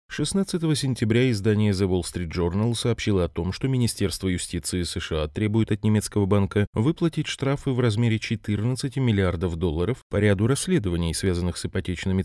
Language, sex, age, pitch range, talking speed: Russian, male, 20-39, 90-125 Hz, 150 wpm